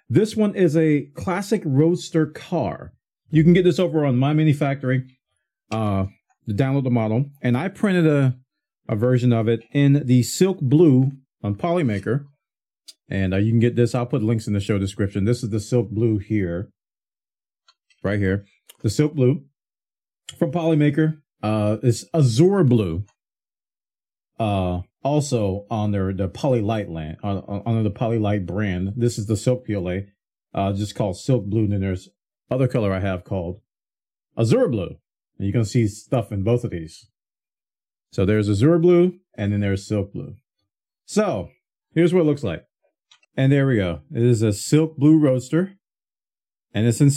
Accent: American